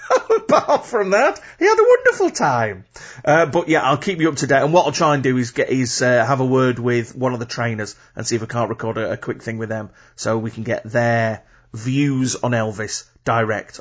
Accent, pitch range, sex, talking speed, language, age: British, 125-160 Hz, male, 245 wpm, English, 30-49